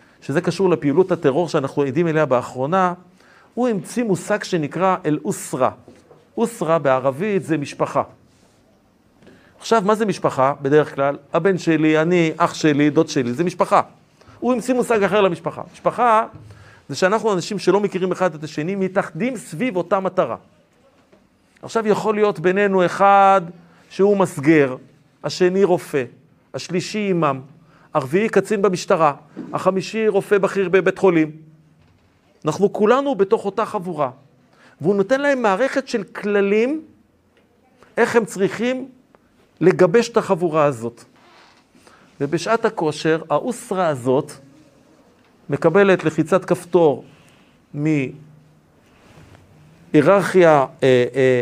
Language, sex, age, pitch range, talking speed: Hebrew, male, 50-69, 150-205 Hz, 115 wpm